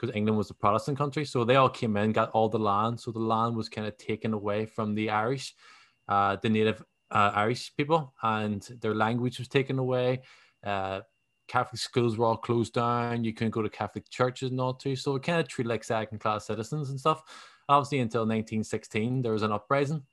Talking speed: 210 wpm